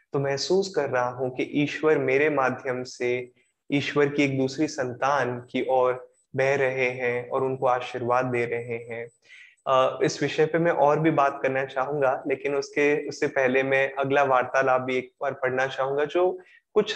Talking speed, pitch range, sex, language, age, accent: 170 wpm, 130-160 Hz, male, Hindi, 20-39, native